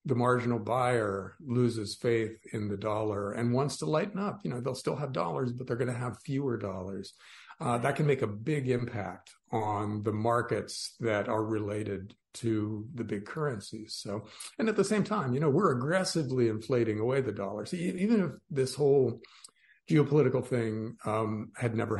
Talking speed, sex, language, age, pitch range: 185 wpm, male, English, 50-69, 110-135 Hz